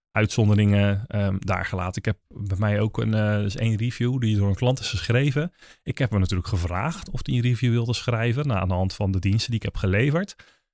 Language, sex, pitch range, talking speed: Dutch, male, 100-140 Hz, 240 wpm